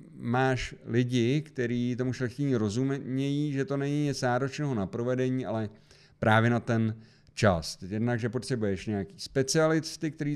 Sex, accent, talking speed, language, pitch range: male, native, 140 wpm, Czech, 110-135 Hz